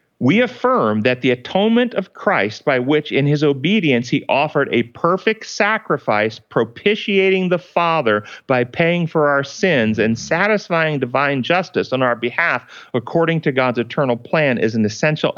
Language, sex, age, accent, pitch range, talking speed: English, male, 40-59, American, 120-160 Hz, 155 wpm